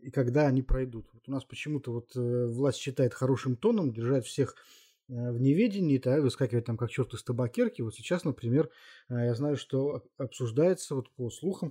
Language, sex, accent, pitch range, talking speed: Russian, male, native, 120-145 Hz, 195 wpm